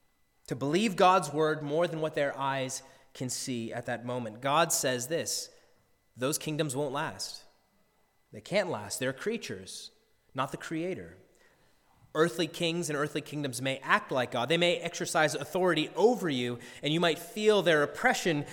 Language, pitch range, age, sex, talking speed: English, 135-215 Hz, 30-49, male, 160 wpm